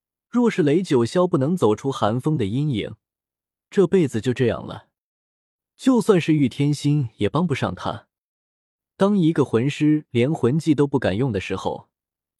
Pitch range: 110-160 Hz